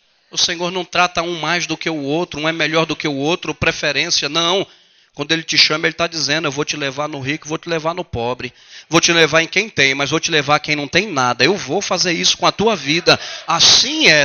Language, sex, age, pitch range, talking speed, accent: Portuguese, male, 40-59, 125-165 Hz, 260 wpm, Brazilian